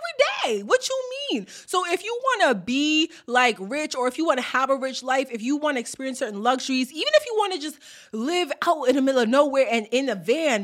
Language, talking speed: English, 255 wpm